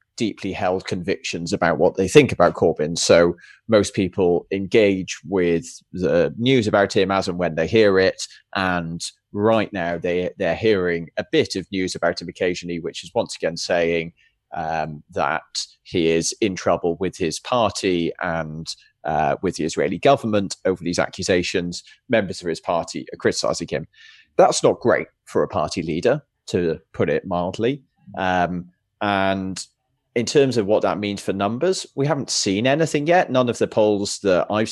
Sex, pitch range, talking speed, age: male, 90-115 Hz, 175 wpm, 20-39